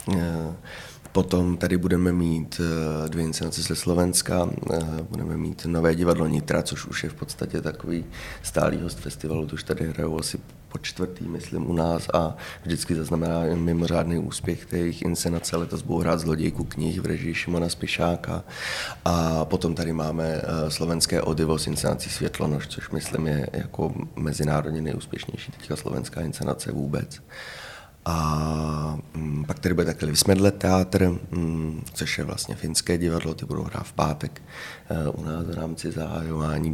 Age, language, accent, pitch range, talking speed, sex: 30-49, Czech, native, 80-85 Hz, 145 wpm, male